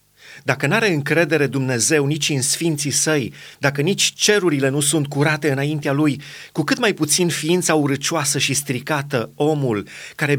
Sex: male